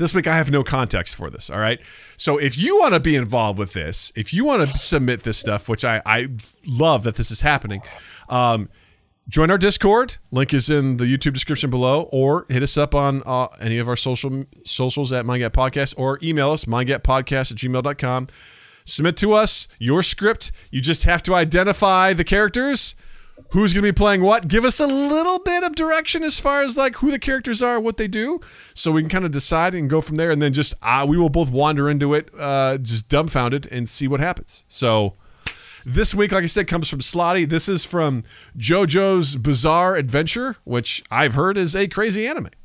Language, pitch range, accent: English, 125-185 Hz, American